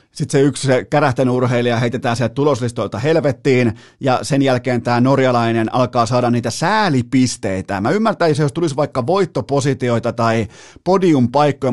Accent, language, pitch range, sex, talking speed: native, Finnish, 115-140 Hz, male, 135 wpm